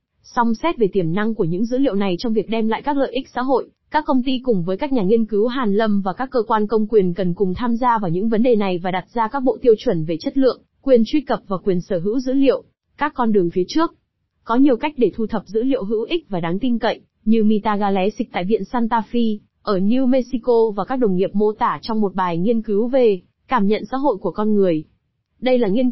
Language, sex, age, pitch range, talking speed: Vietnamese, female, 20-39, 200-255 Hz, 265 wpm